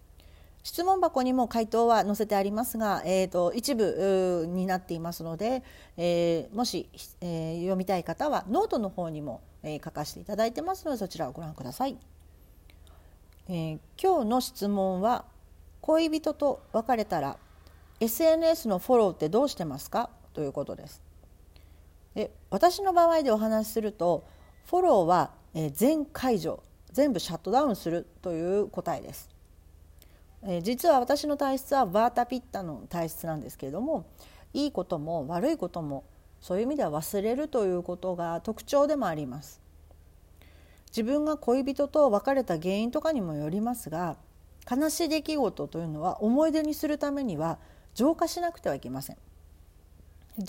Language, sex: Japanese, female